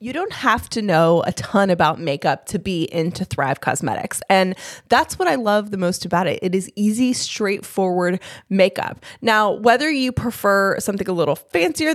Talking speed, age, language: 180 wpm, 20-39, English